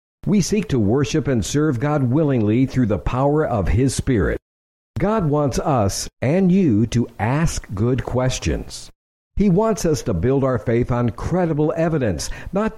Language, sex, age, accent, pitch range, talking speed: English, male, 60-79, American, 100-150 Hz, 160 wpm